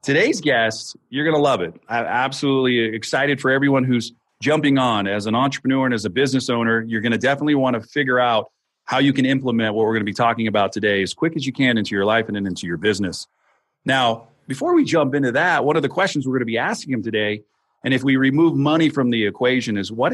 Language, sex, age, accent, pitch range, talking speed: English, male, 40-59, American, 115-140 Hz, 245 wpm